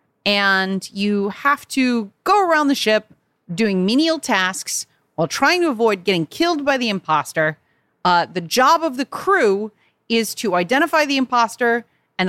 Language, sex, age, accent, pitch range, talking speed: English, female, 30-49, American, 175-245 Hz, 155 wpm